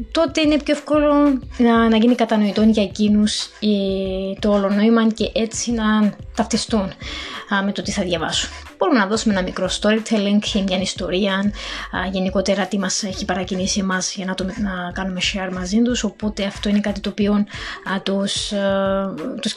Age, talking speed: 20-39, 165 wpm